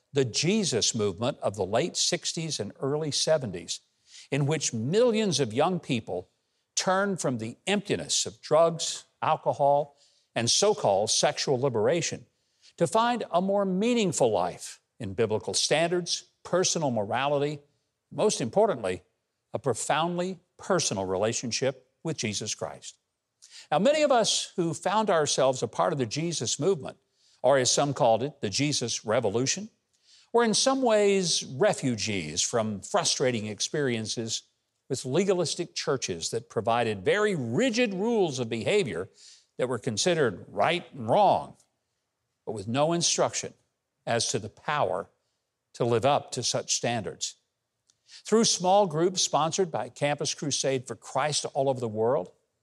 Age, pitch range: 50-69, 120-180 Hz